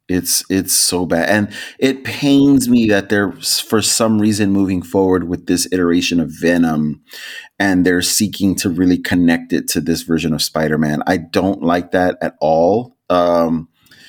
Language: English